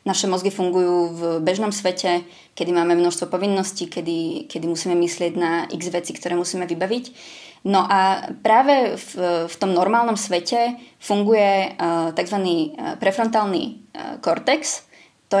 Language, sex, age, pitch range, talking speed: Czech, female, 20-39, 175-205 Hz, 135 wpm